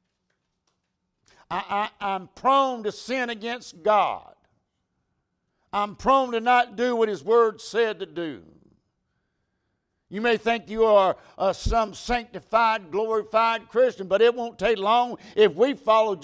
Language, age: English, 60-79